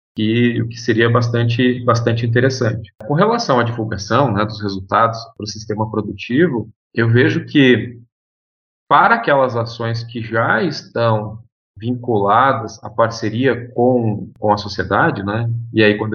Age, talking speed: 40-59, 140 wpm